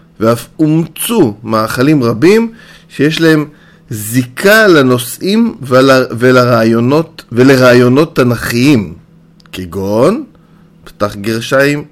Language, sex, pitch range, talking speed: Hebrew, male, 110-165 Hz, 70 wpm